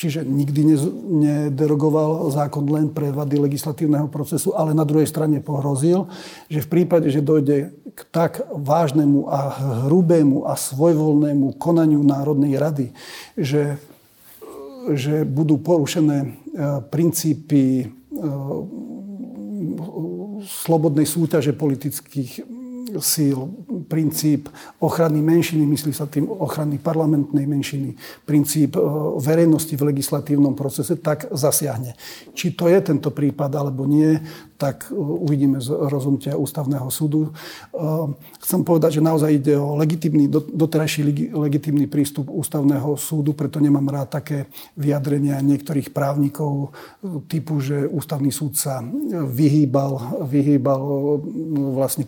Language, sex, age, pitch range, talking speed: Slovak, male, 50-69, 140-160 Hz, 110 wpm